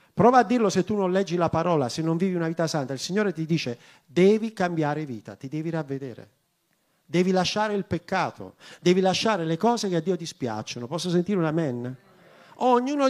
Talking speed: 190 wpm